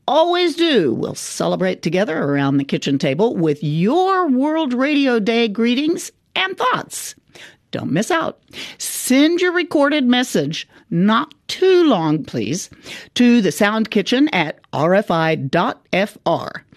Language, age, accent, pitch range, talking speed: English, 50-69, American, 160-260 Hz, 120 wpm